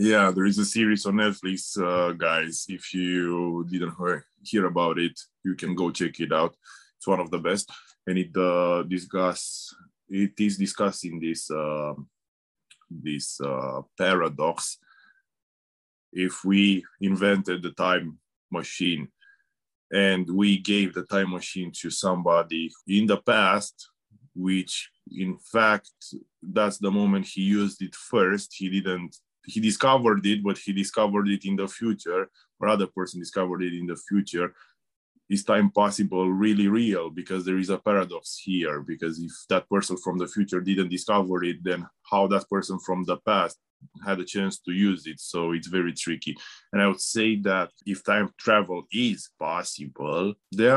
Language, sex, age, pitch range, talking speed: English, male, 20-39, 90-100 Hz, 160 wpm